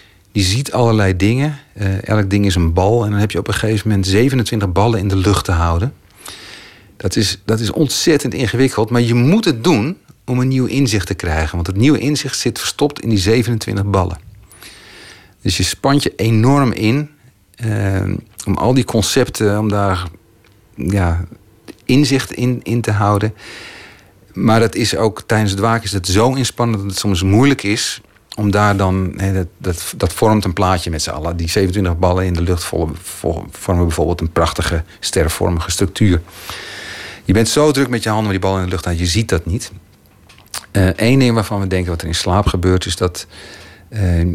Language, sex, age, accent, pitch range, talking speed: Dutch, male, 40-59, Dutch, 90-115 Hz, 190 wpm